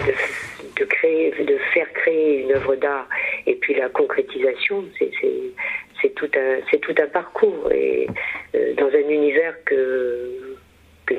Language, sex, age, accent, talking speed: French, female, 50-69, French, 155 wpm